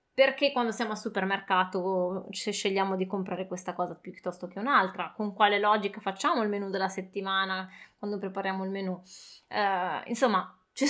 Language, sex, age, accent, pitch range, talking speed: Italian, female, 20-39, native, 190-235 Hz, 160 wpm